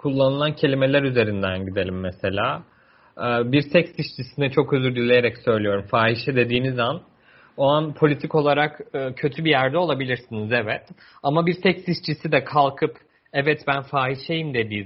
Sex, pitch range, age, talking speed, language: male, 125-170 Hz, 40-59, 135 wpm, Turkish